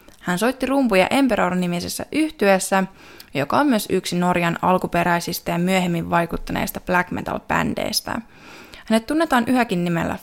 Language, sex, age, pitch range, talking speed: Finnish, female, 20-39, 180-235 Hz, 115 wpm